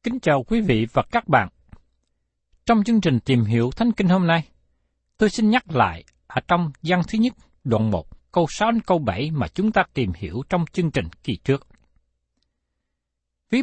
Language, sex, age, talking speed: Vietnamese, male, 60-79, 190 wpm